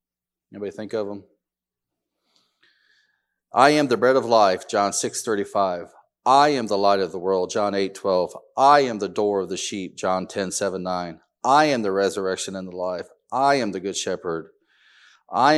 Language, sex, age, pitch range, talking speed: English, male, 40-59, 100-135 Hz, 180 wpm